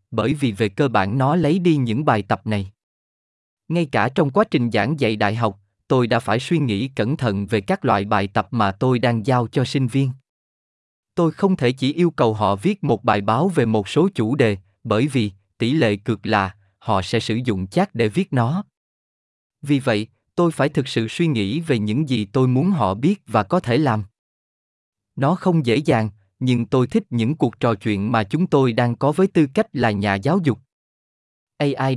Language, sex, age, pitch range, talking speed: Vietnamese, male, 20-39, 110-155 Hz, 210 wpm